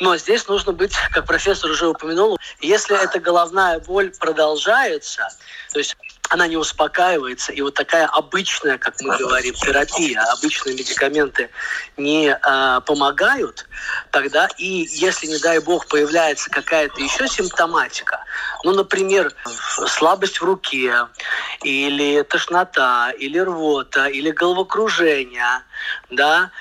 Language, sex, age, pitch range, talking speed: Russian, male, 20-39, 150-200 Hz, 115 wpm